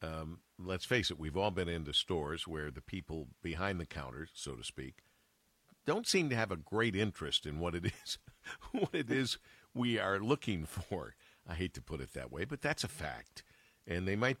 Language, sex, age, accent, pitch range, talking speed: English, male, 60-79, American, 85-115 Hz, 210 wpm